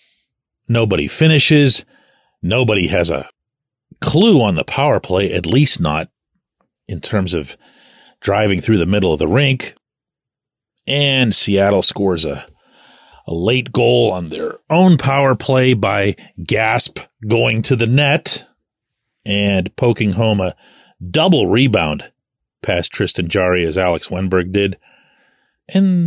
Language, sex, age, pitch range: English, male, 40-59, 105-150 Hz